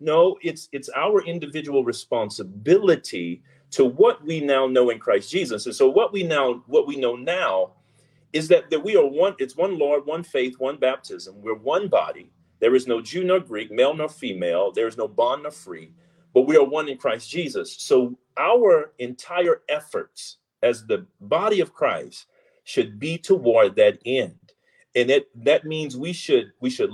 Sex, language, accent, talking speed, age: male, English, American, 185 wpm, 40-59